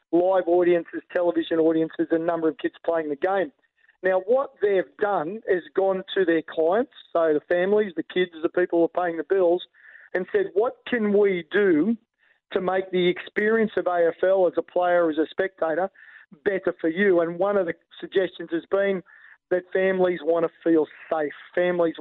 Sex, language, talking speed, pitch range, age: male, English, 185 wpm, 165-195 Hz, 40-59